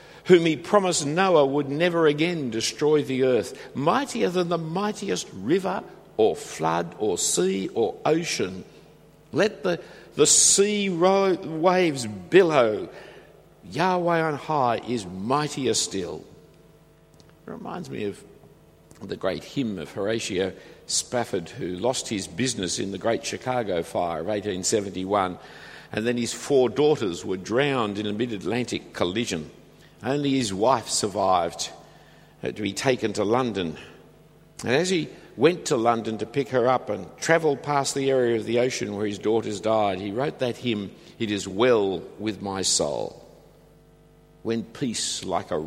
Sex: male